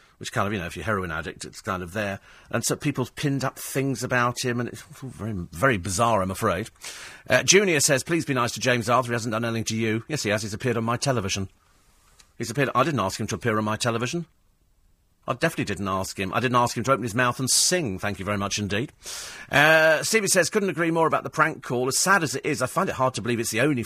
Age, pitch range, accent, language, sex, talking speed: 40-59, 105-155 Hz, British, English, male, 270 wpm